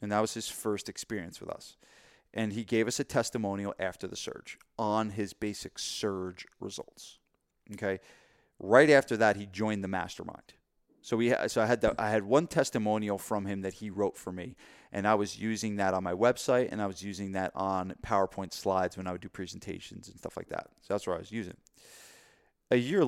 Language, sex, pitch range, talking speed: English, male, 95-115 Hz, 210 wpm